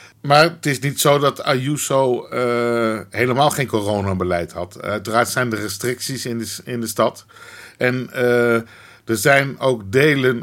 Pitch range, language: 115-130 Hz, Dutch